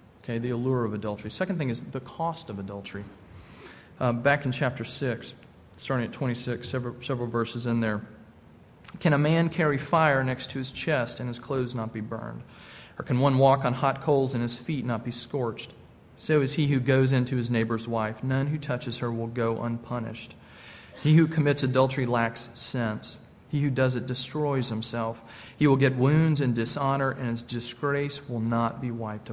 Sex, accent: male, American